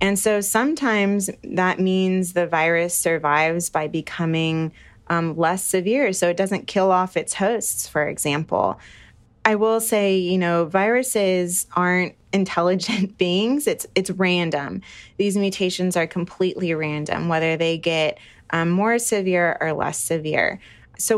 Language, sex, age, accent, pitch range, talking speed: English, female, 20-39, American, 160-195 Hz, 140 wpm